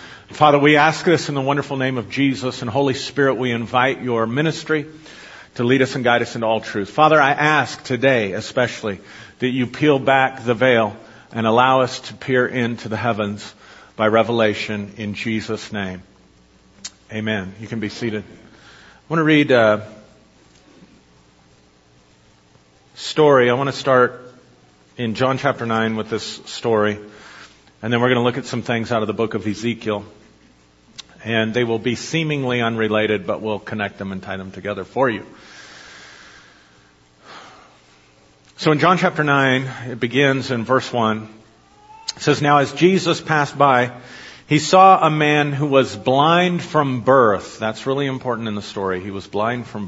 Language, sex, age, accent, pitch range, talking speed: English, male, 50-69, American, 105-140 Hz, 165 wpm